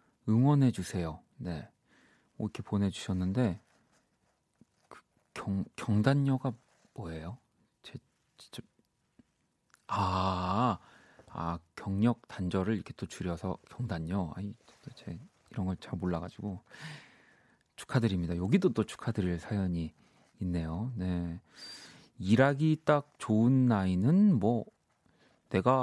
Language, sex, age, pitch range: Korean, male, 40-59, 90-130 Hz